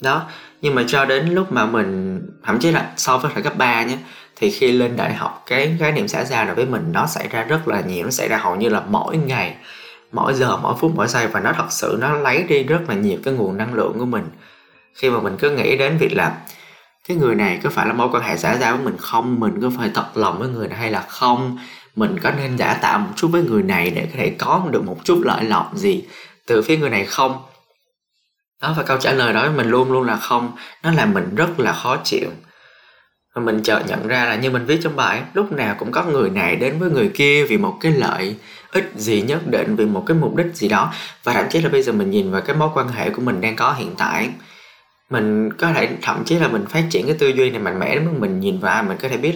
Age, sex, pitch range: 20-39, male, 125-200 Hz